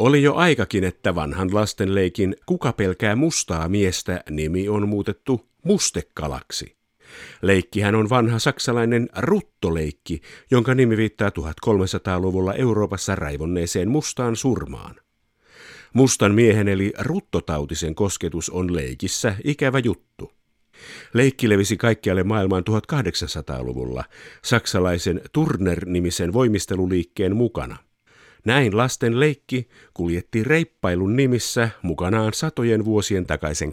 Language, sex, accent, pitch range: Finnish, male, native, 85-120 Hz